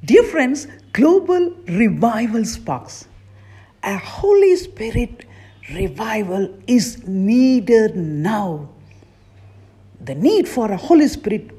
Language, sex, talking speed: English, female, 95 wpm